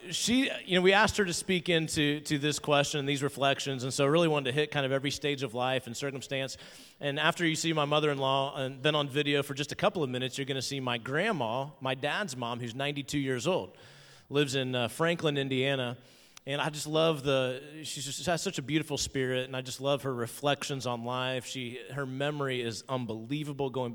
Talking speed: 220 wpm